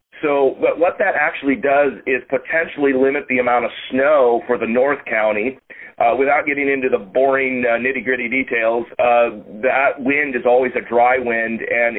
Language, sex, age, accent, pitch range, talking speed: English, male, 40-59, American, 120-135 Hz, 175 wpm